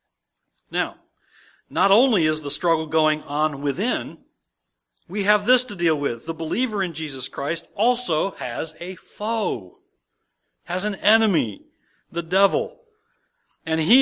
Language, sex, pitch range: English, male, 150-210 Hz